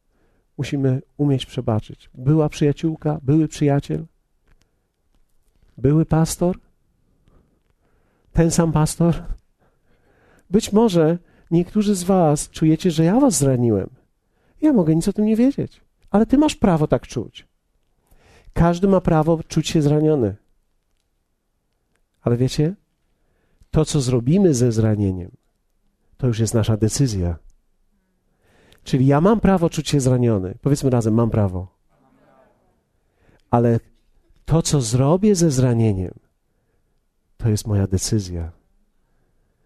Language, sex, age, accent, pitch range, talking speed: Polish, male, 40-59, native, 115-160 Hz, 110 wpm